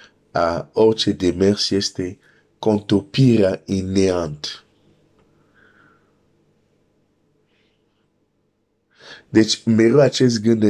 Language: Romanian